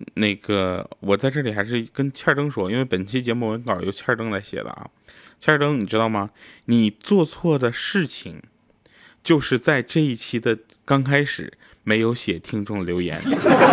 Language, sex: Chinese, male